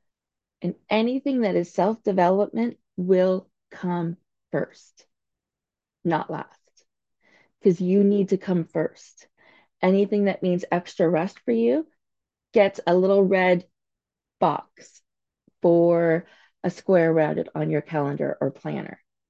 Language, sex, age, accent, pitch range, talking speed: English, female, 30-49, American, 160-195 Hz, 115 wpm